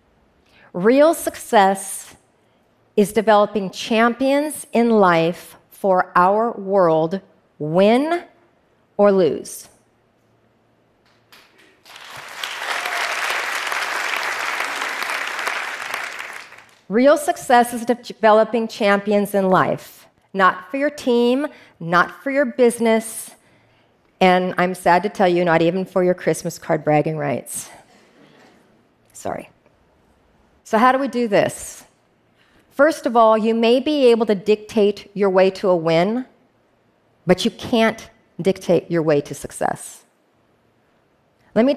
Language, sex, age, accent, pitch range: Korean, female, 40-59, American, 170-225 Hz